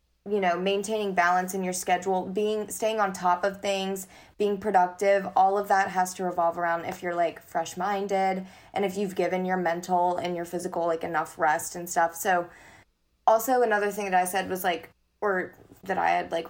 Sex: female